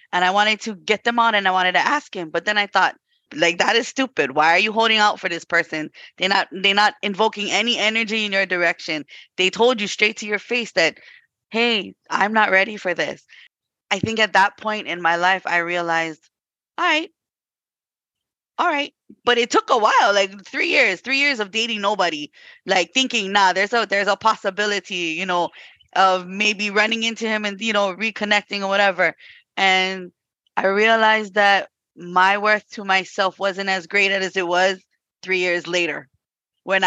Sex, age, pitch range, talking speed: female, 20-39, 185-225 Hz, 190 wpm